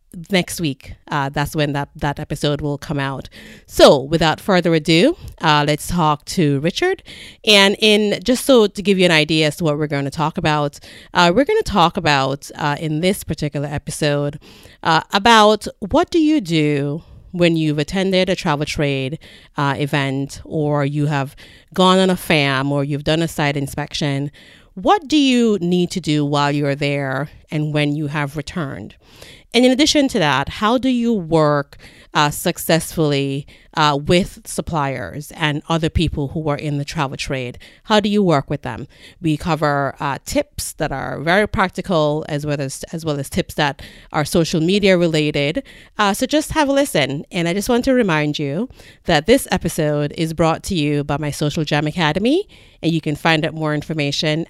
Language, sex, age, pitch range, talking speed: English, female, 30-49, 145-185 Hz, 185 wpm